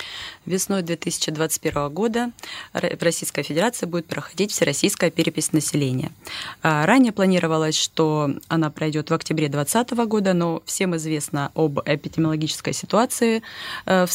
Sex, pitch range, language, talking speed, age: female, 155-185 Hz, Russian, 115 wpm, 30-49